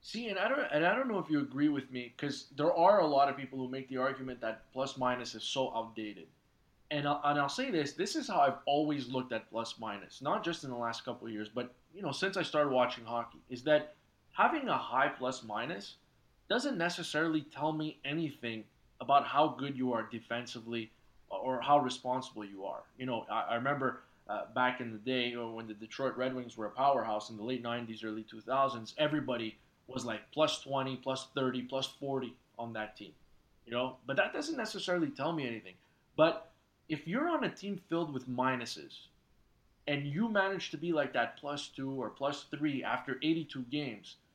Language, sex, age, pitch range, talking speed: English, male, 20-39, 120-150 Hz, 210 wpm